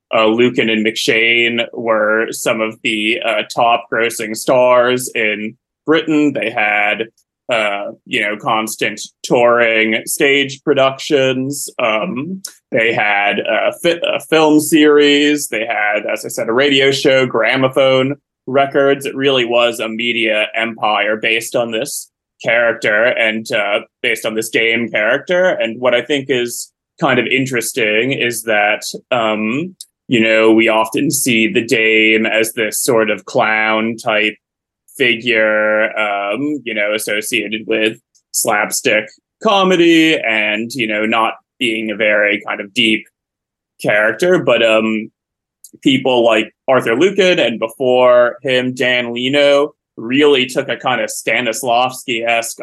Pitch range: 110-140 Hz